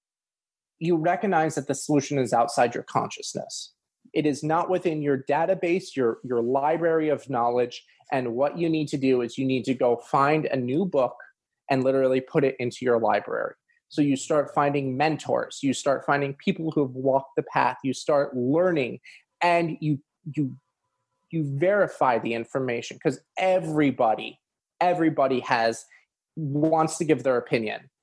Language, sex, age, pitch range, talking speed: English, male, 30-49, 130-165 Hz, 160 wpm